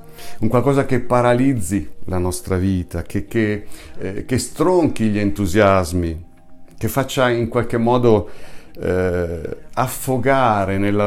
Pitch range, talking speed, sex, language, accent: 95-120 Hz, 120 wpm, male, Italian, native